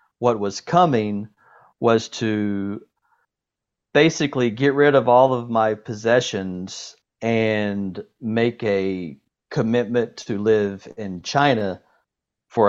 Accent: American